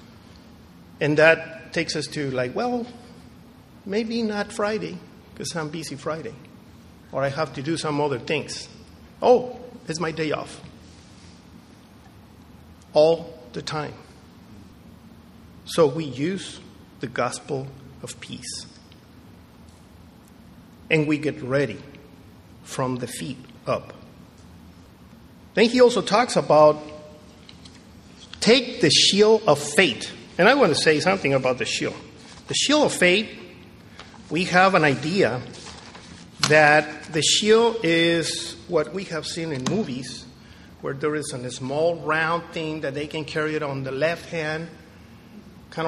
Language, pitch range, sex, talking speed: English, 140-175 Hz, male, 130 wpm